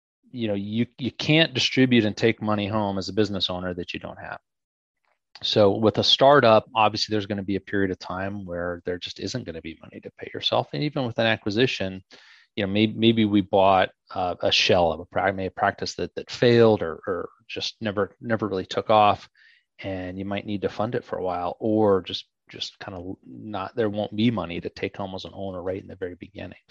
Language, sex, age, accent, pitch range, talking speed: English, male, 30-49, American, 95-115 Hz, 230 wpm